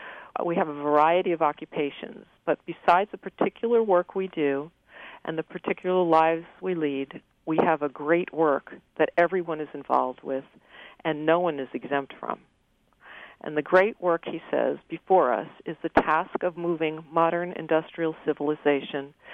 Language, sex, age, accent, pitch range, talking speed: English, female, 50-69, American, 150-180 Hz, 160 wpm